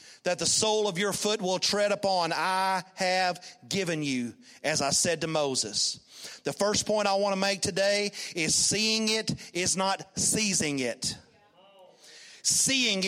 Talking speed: 155 wpm